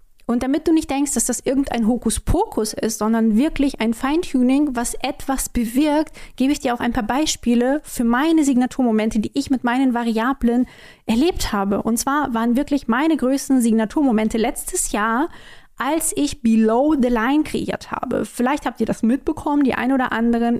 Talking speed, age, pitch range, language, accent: 170 wpm, 20-39, 225-270 Hz, German, German